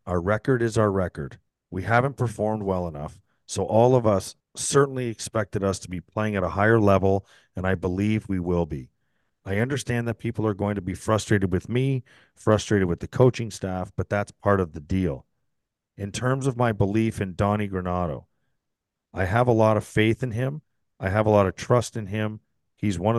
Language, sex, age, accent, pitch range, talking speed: English, male, 40-59, American, 95-110 Hz, 200 wpm